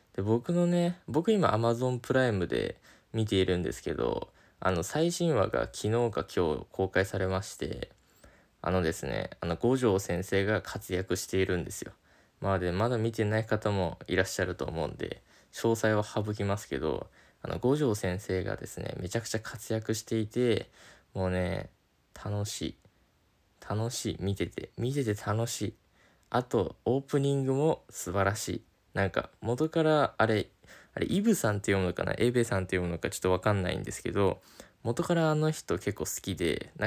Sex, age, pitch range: male, 20-39, 95-130 Hz